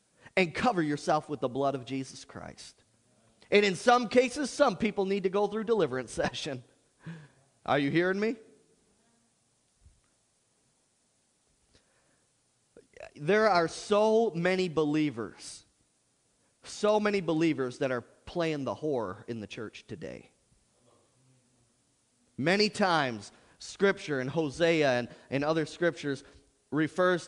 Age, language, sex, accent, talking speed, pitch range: 30-49, English, male, American, 115 wpm, 135-200 Hz